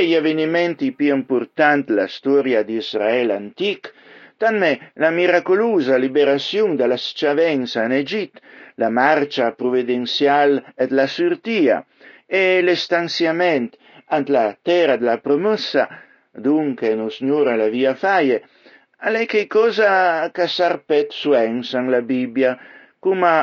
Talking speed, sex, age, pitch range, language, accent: 115 wpm, male, 60-79, 130-175 Hz, Italian, native